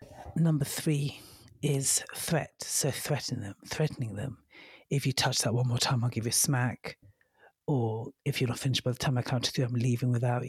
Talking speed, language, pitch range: 205 wpm, English, 125-145 Hz